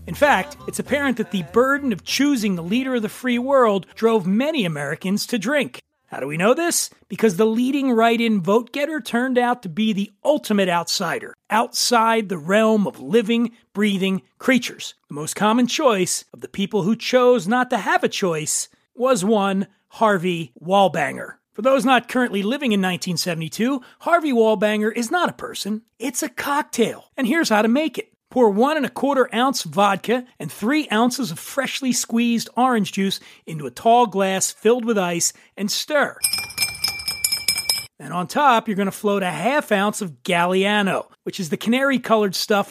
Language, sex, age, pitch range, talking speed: English, male, 40-59, 195-250 Hz, 175 wpm